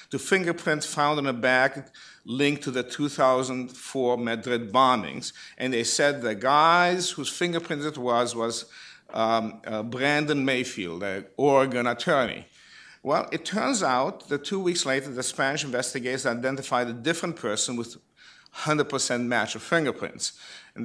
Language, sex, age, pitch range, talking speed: English, male, 50-69, 115-155 Hz, 145 wpm